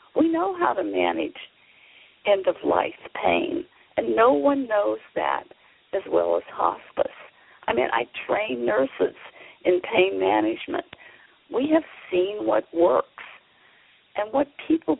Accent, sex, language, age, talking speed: American, female, English, 50-69, 130 wpm